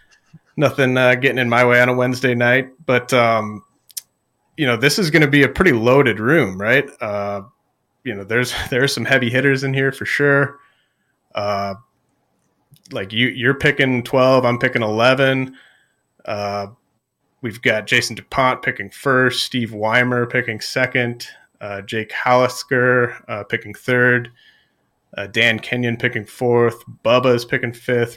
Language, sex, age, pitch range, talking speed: English, male, 30-49, 110-130 Hz, 155 wpm